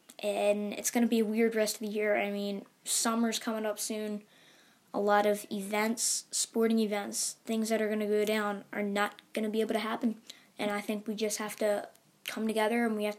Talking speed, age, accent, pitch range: 225 wpm, 10-29, American, 210-225 Hz